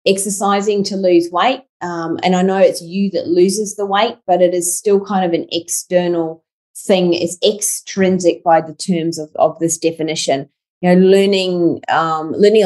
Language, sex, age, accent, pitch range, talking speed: English, female, 30-49, Australian, 160-190 Hz, 170 wpm